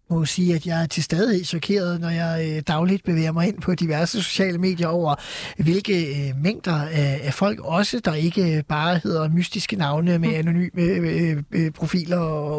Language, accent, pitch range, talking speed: Danish, native, 165-195 Hz, 155 wpm